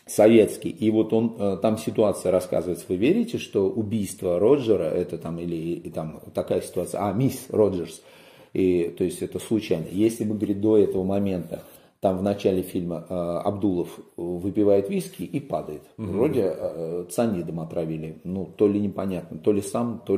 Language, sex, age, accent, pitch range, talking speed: Russian, male, 40-59, native, 85-110 Hz, 160 wpm